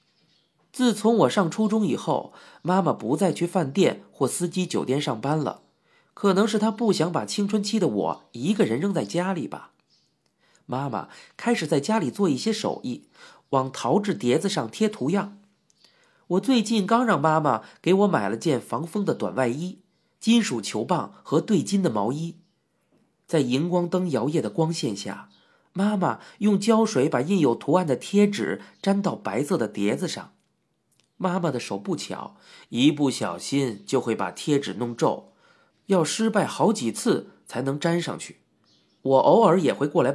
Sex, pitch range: male, 140-205 Hz